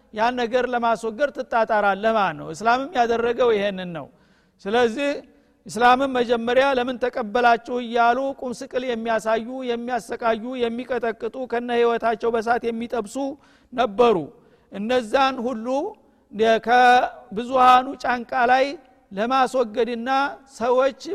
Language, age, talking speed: Amharic, 60-79, 90 wpm